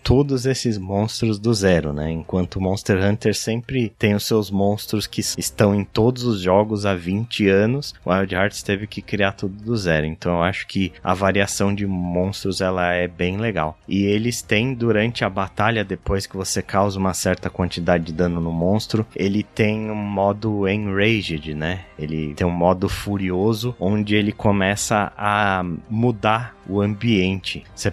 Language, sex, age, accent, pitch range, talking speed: Portuguese, male, 20-39, Brazilian, 90-105 Hz, 170 wpm